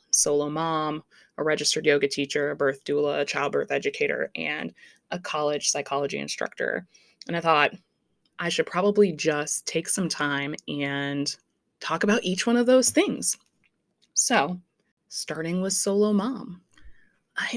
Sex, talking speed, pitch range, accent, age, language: female, 140 wpm, 160-210 Hz, American, 20-39, English